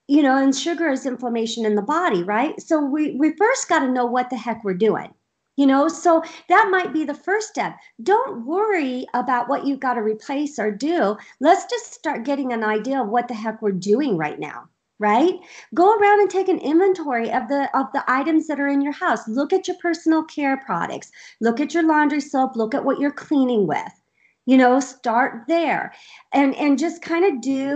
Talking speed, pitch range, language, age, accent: 215 wpm, 245-325 Hz, English, 50-69, American